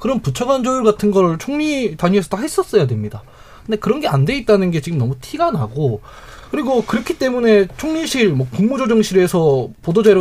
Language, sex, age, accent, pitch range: Korean, male, 20-39, native, 145-215 Hz